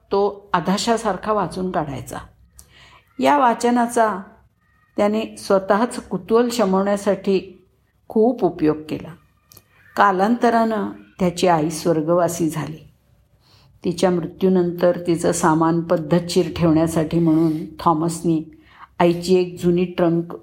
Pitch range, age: 160-200 Hz, 50-69